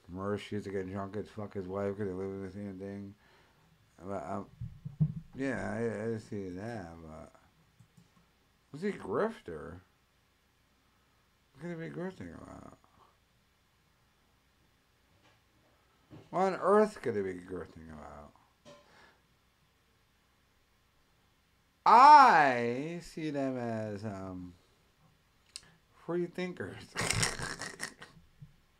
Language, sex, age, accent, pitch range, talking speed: English, male, 50-69, American, 95-155 Hz, 100 wpm